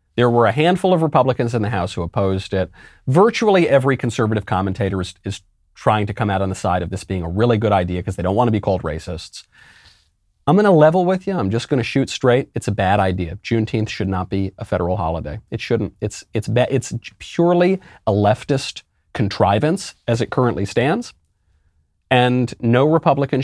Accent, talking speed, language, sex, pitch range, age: American, 205 wpm, English, male, 90-135 Hz, 40-59